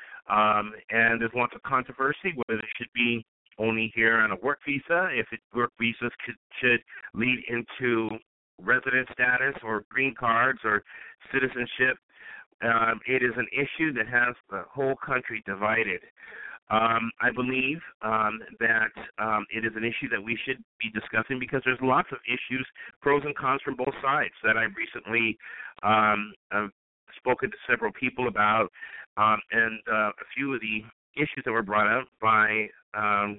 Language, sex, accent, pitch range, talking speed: English, male, American, 110-130 Hz, 165 wpm